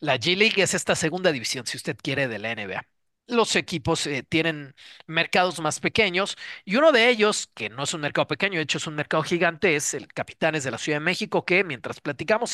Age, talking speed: 40-59, 225 wpm